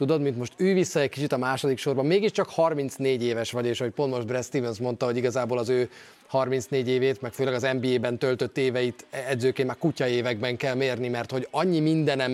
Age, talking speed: 30-49, 215 wpm